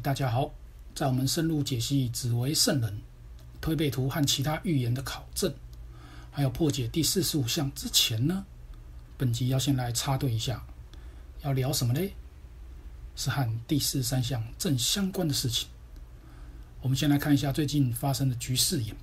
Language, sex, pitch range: Chinese, male, 120-150 Hz